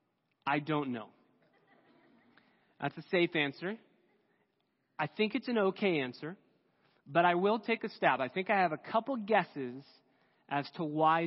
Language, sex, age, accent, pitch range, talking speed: English, male, 30-49, American, 140-190 Hz, 155 wpm